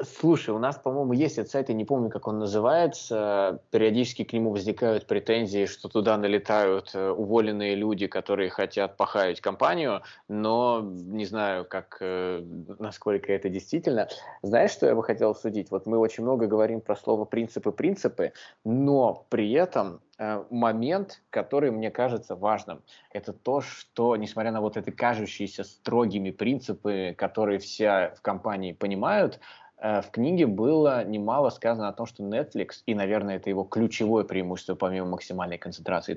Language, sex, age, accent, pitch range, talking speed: Russian, male, 20-39, native, 100-115 Hz, 150 wpm